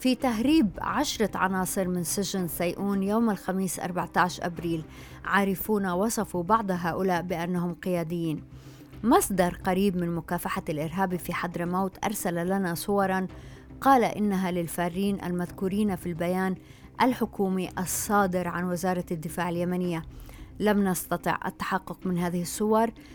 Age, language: 30-49, Arabic